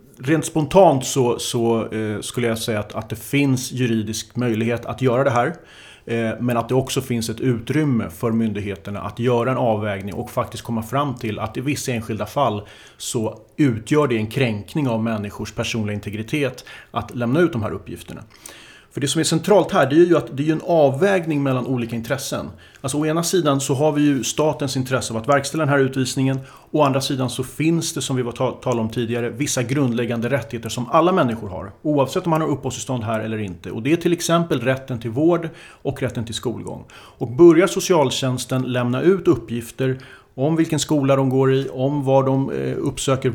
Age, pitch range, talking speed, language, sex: 30-49, 115-145 Hz, 200 wpm, Swedish, male